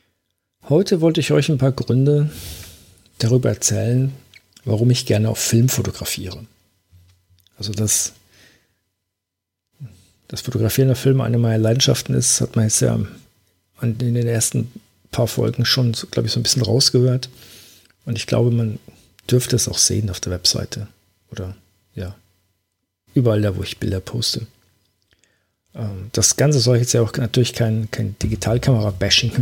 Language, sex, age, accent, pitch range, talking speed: German, male, 50-69, German, 95-120 Hz, 145 wpm